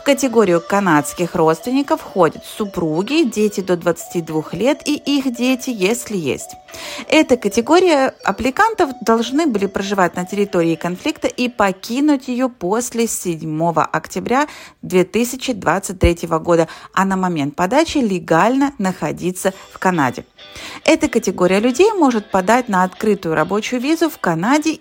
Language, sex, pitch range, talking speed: Russian, female, 175-265 Hz, 125 wpm